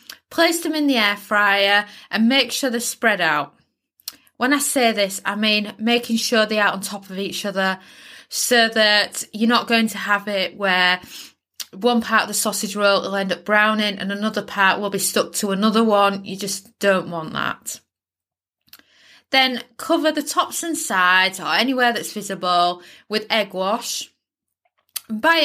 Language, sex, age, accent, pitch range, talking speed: English, female, 20-39, British, 195-245 Hz, 175 wpm